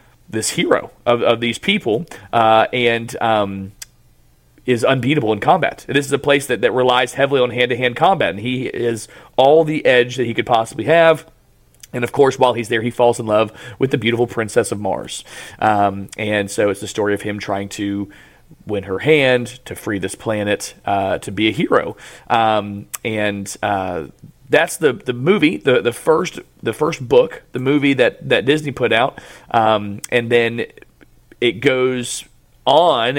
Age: 30-49